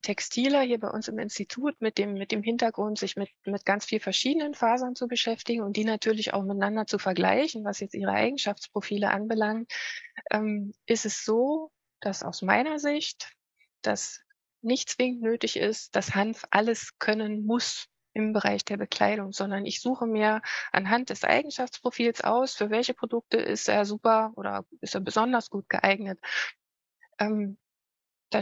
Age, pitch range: 20-39, 205-245 Hz